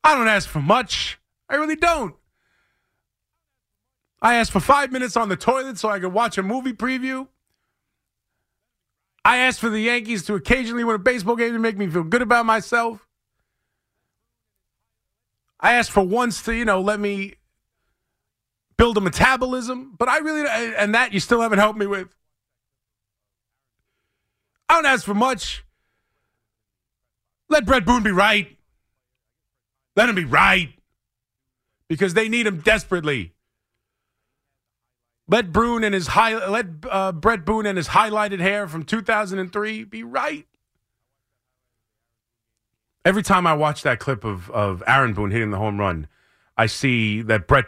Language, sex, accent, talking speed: English, male, American, 150 wpm